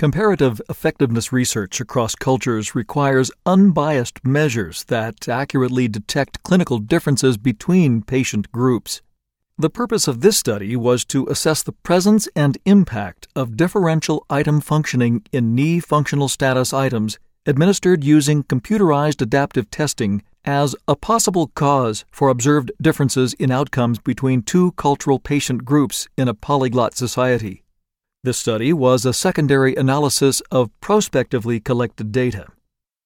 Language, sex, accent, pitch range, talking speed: English, male, American, 125-150 Hz, 125 wpm